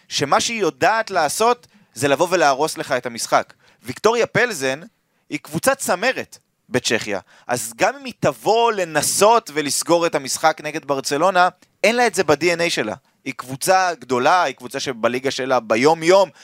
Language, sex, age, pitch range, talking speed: Hebrew, male, 20-39, 135-195 Hz, 150 wpm